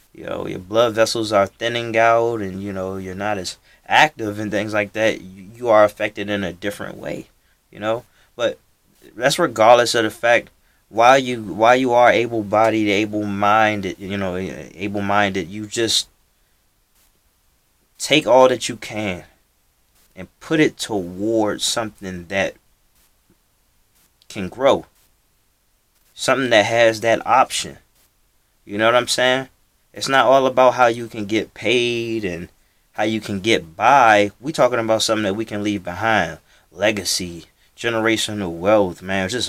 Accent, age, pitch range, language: American, 20-39, 95-115 Hz, English